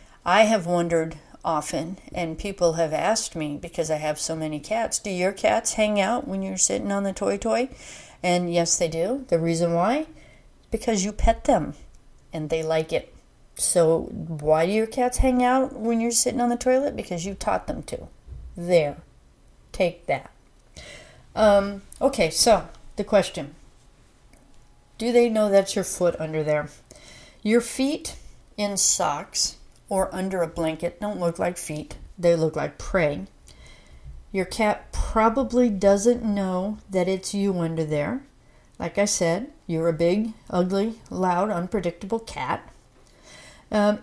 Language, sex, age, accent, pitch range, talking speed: English, female, 40-59, American, 170-225 Hz, 155 wpm